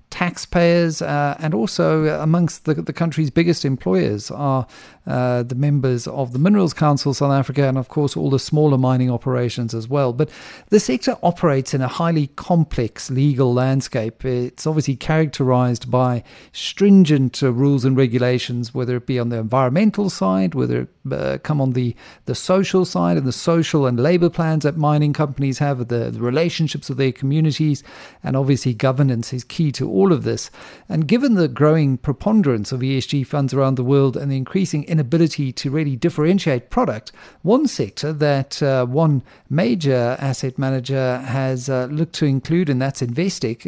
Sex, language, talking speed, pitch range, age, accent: male, English, 175 wpm, 130-170 Hz, 50-69, British